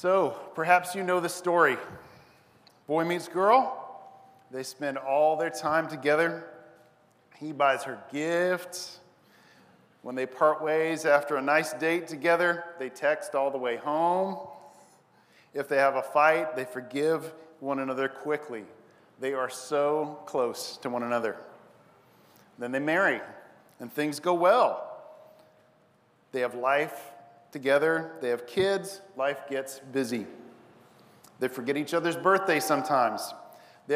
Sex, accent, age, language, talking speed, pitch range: male, American, 40-59, English, 135 wpm, 130-170 Hz